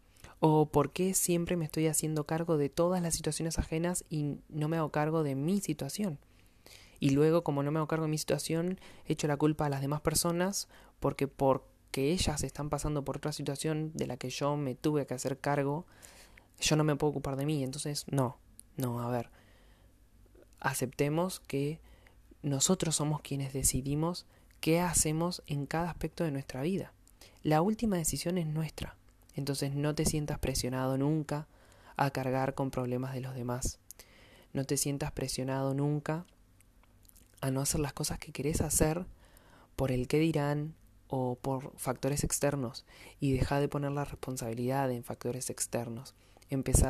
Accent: Argentinian